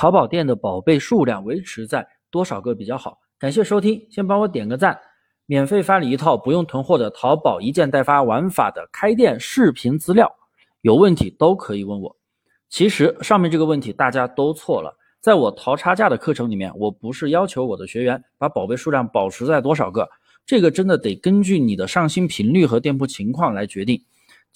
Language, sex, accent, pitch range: Chinese, male, native, 125-195 Hz